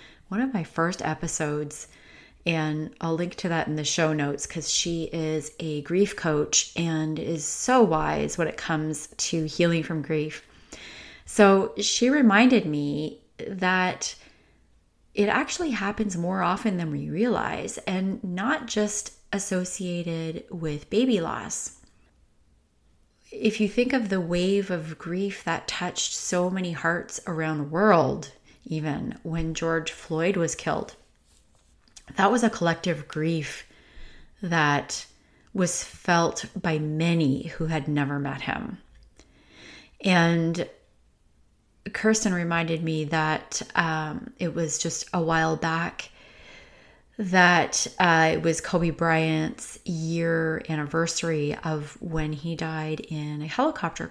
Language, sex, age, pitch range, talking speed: English, female, 30-49, 155-190 Hz, 130 wpm